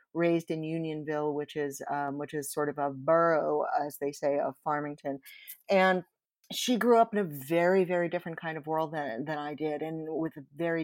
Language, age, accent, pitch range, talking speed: English, 50-69, American, 155-175 Hz, 205 wpm